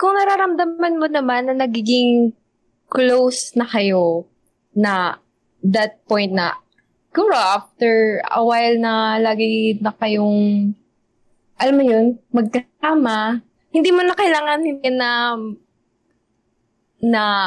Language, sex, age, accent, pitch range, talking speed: Filipino, female, 20-39, native, 185-250 Hz, 105 wpm